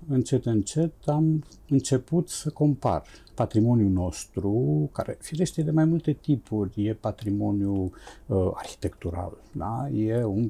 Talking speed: 120 wpm